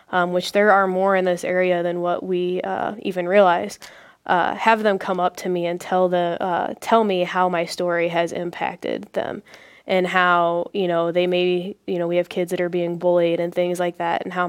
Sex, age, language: female, 10-29, English